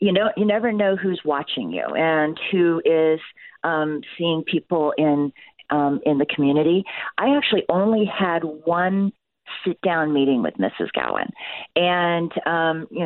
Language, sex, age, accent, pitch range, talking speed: English, female, 40-59, American, 155-180 Hz, 150 wpm